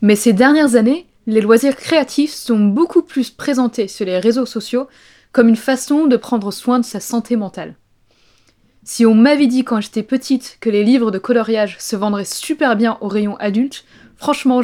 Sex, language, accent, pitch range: female, French, French, 205-255 Hz